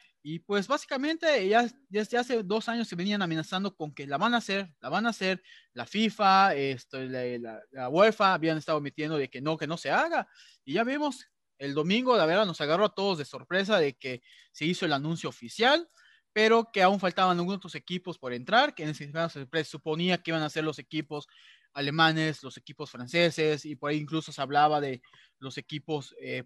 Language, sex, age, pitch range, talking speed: Spanish, male, 30-49, 145-200 Hz, 210 wpm